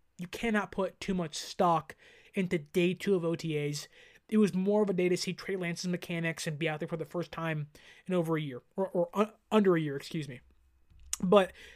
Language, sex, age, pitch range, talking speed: English, male, 20-39, 170-215 Hz, 215 wpm